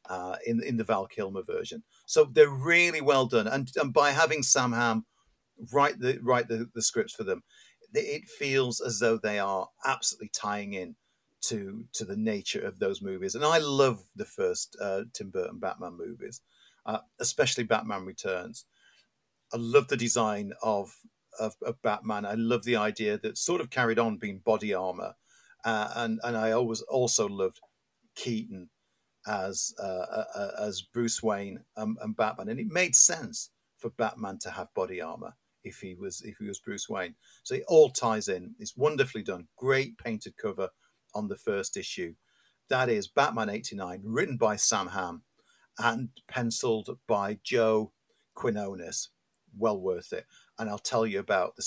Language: English